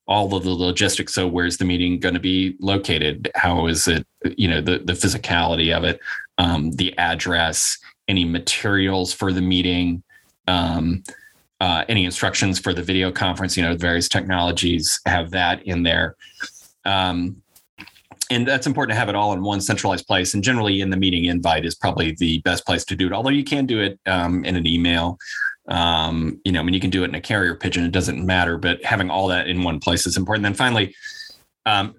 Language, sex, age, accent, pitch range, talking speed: English, male, 30-49, American, 85-100 Hz, 205 wpm